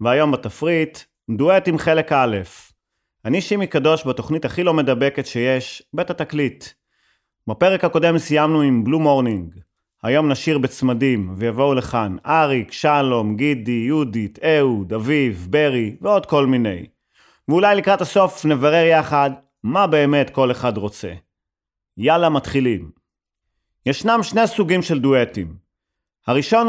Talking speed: 120 wpm